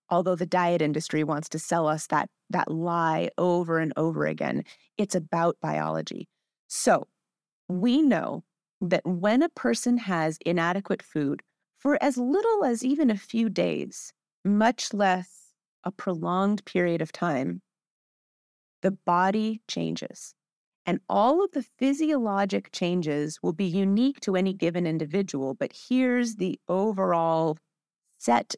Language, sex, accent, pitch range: English, female, American, 165-220 Hz